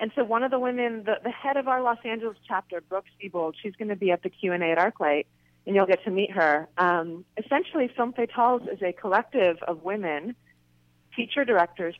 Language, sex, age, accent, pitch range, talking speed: English, female, 30-49, American, 165-215 Hz, 210 wpm